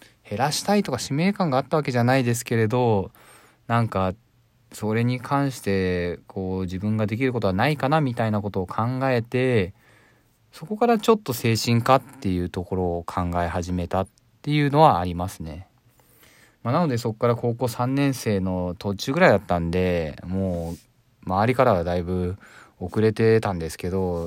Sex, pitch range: male, 95-125 Hz